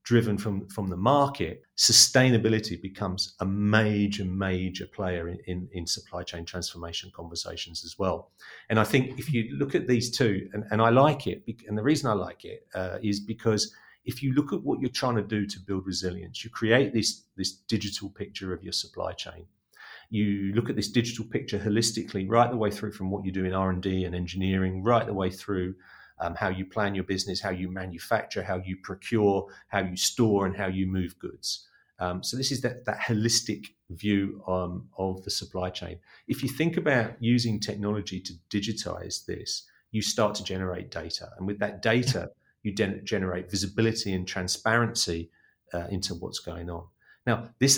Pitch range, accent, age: 95-110 Hz, British, 40-59